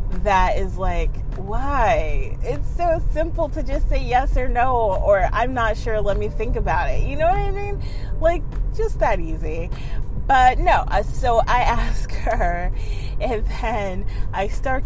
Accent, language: American, English